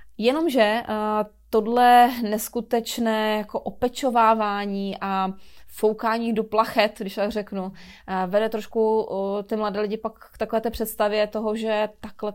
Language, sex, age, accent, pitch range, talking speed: Czech, female, 30-49, native, 200-225 Hz, 130 wpm